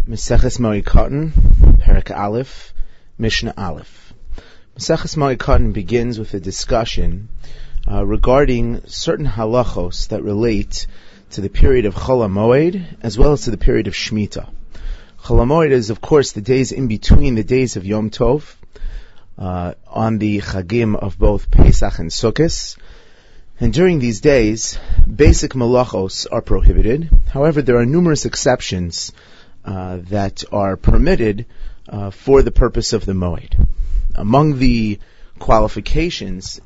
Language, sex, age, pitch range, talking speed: English, male, 30-49, 100-125 Hz, 135 wpm